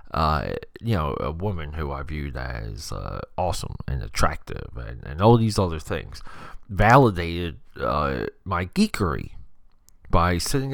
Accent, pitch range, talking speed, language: American, 85-125 Hz, 140 wpm, English